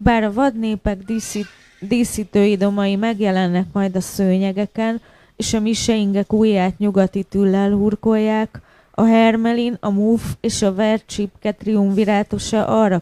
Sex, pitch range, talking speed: female, 180-215 Hz, 110 wpm